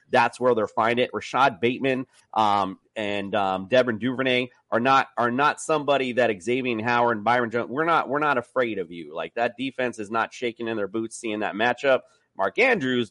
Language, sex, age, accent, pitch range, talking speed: English, male, 30-49, American, 115-150 Hz, 200 wpm